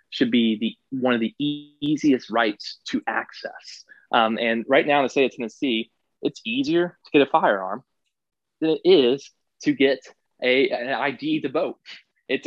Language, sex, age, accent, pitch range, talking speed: English, male, 20-39, American, 125-160 Hz, 180 wpm